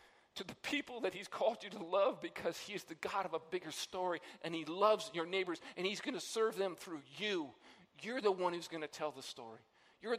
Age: 50-69